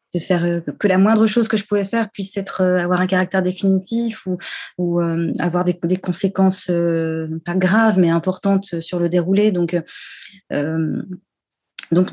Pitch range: 175-205 Hz